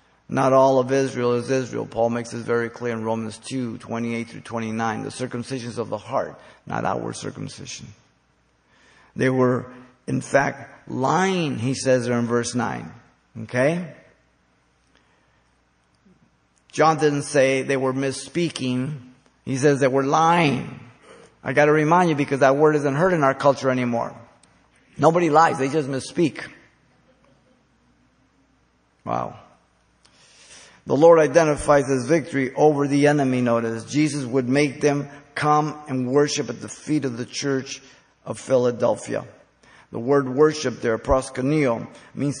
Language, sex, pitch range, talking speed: English, male, 120-145 Hz, 140 wpm